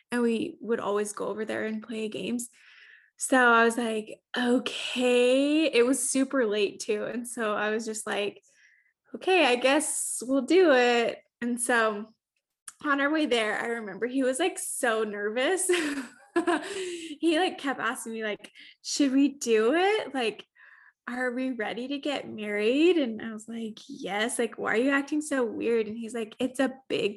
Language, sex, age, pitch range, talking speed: English, female, 10-29, 220-275 Hz, 175 wpm